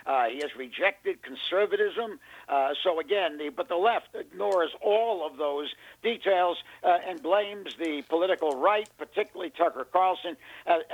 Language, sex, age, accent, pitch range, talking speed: English, male, 60-79, American, 160-200 Hz, 150 wpm